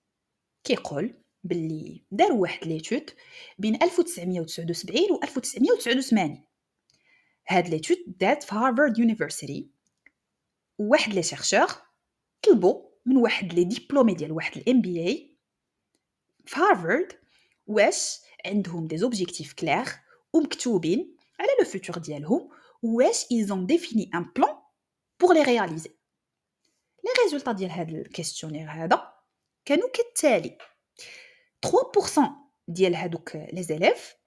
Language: Arabic